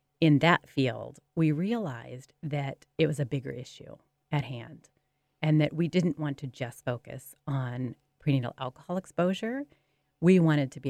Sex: female